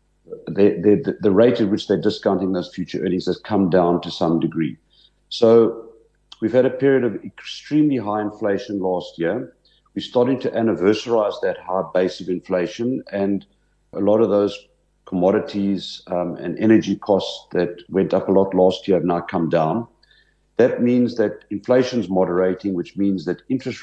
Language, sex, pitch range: English, male, 95-115 Hz